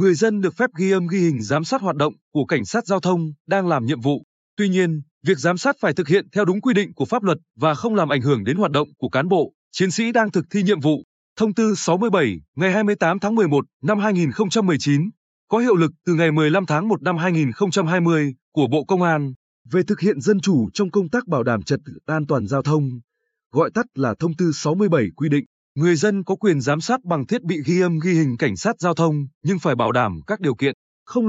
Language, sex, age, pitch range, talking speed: Vietnamese, male, 20-39, 150-195 Hz, 240 wpm